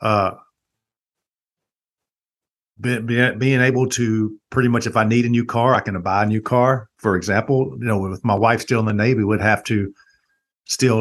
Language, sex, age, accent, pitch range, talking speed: English, male, 50-69, American, 100-130 Hz, 190 wpm